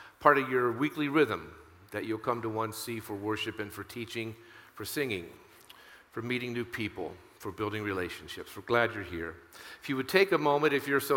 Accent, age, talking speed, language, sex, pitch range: American, 50-69, 200 wpm, English, male, 110-135 Hz